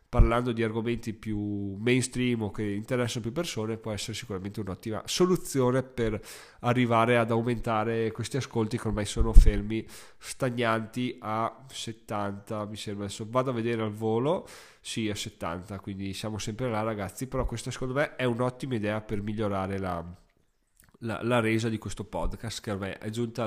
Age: 20-39